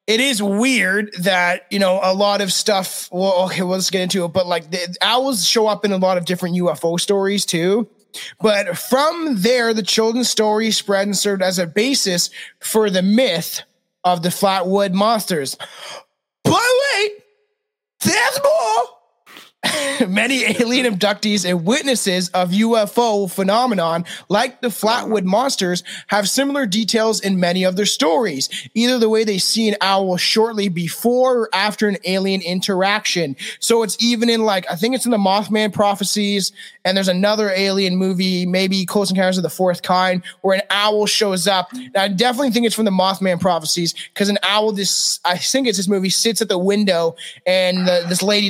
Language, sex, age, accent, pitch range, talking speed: English, male, 20-39, American, 185-225 Hz, 180 wpm